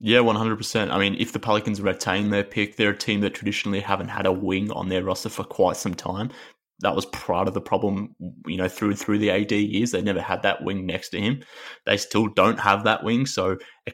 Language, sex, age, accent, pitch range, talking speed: English, male, 20-39, Australian, 95-105 Hz, 235 wpm